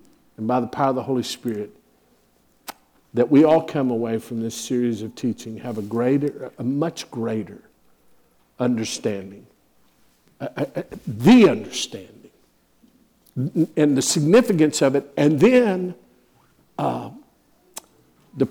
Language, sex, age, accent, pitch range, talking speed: English, male, 50-69, American, 120-160 Hz, 125 wpm